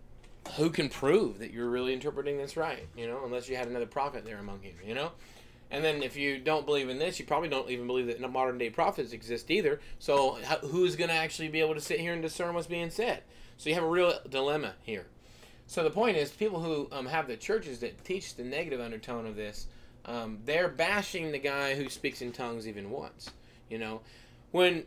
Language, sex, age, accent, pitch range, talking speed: English, male, 20-39, American, 125-175 Hz, 225 wpm